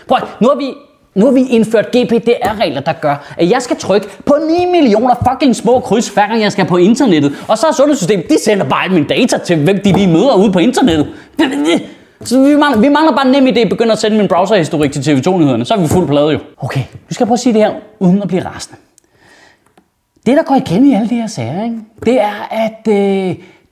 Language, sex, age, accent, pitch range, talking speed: Danish, male, 30-49, native, 170-235 Hz, 235 wpm